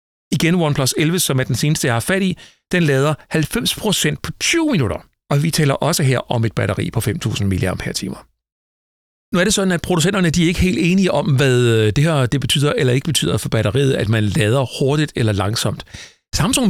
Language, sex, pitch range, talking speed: Danish, male, 115-165 Hz, 205 wpm